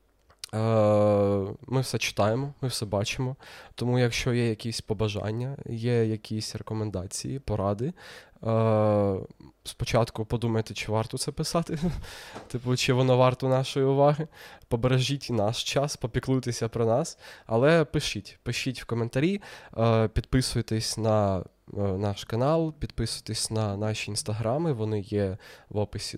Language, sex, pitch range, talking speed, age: Ukrainian, male, 105-130 Hz, 115 wpm, 20-39